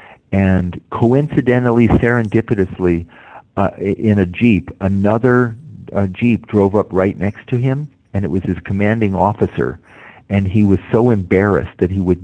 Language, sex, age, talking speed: English, male, 50-69, 145 wpm